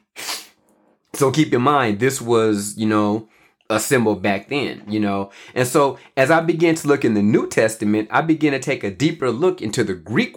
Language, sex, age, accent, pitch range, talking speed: English, male, 30-49, American, 110-145 Hz, 205 wpm